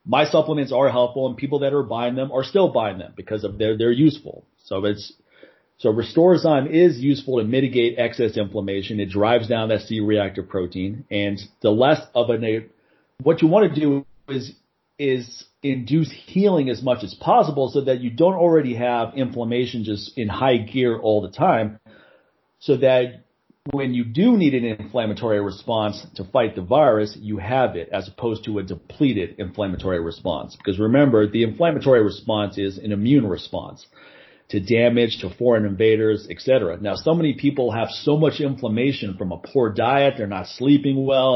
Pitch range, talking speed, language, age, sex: 105-135 Hz, 175 wpm, English, 40-59, male